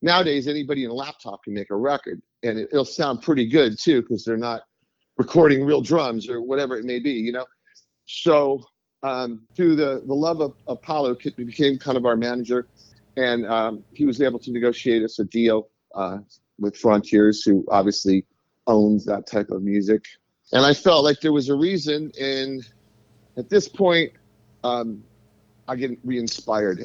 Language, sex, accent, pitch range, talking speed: English, male, American, 105-130 Hz, 175 wpm